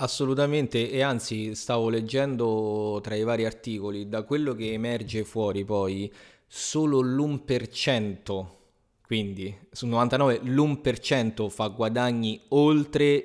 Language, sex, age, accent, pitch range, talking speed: Italian, male, 20-39, native, 105-125 Hz, 110 wpm